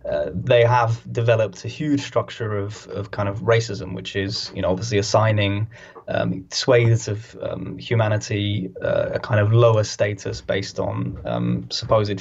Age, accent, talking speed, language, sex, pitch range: 10-29, British, 160 wpm, English, male, 100-115 Hz